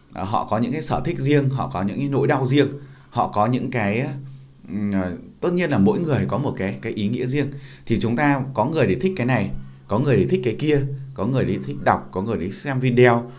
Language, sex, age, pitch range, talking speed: Vietnamese, male, 20-39, 100-135 Hz, 240 wpm